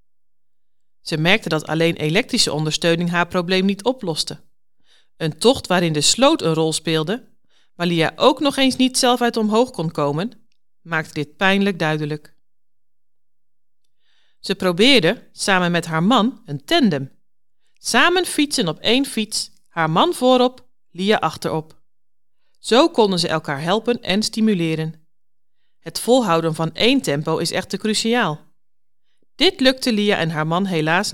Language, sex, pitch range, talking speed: Dutch, female, 160-235 Hz, 140 wpm